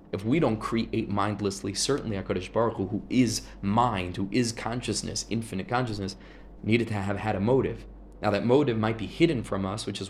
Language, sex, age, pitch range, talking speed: English, male, 20-39, 100-130 Hz, 195 wpm